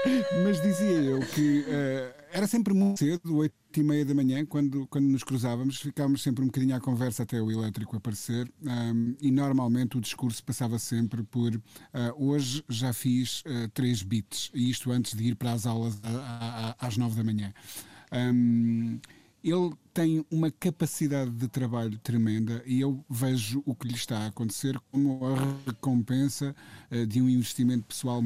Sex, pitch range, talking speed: male, 115-140 Hz, 160 wpm